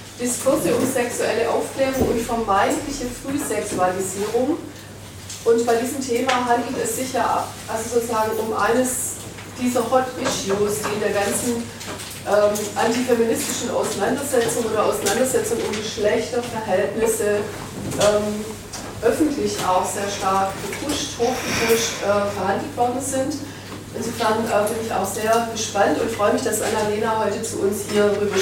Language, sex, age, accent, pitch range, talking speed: German, female, 30-49, German, 200-240 Hz, 130 wpm